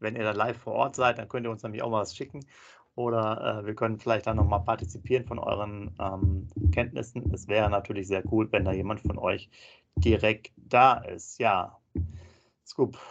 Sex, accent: male, German